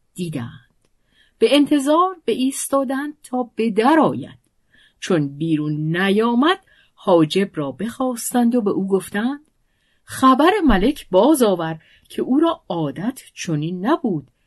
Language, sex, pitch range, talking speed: Persian, female, 155-250 Hz, 110 wpm